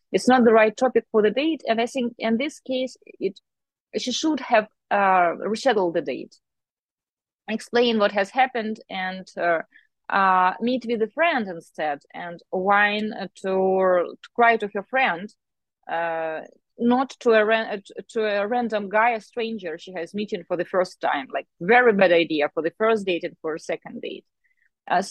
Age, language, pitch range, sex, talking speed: 30-49, English, 185-240 Hz, female, 175 wpm